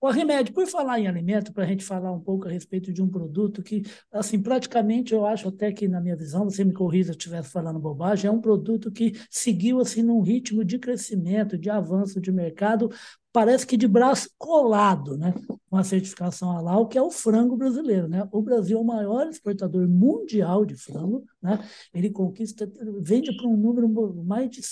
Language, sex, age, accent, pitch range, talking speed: Portuguese, male, 60-79, Brazilian, 190-240 Hz, 205 wpm